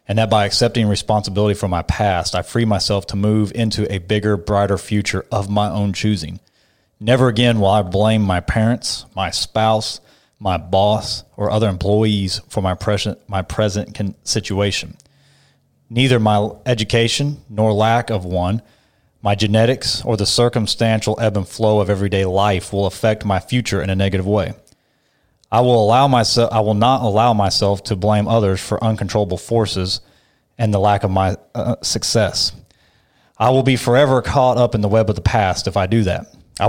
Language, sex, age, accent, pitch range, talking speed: English, male, 30-49, American, 100-115 Hz, 175 wpm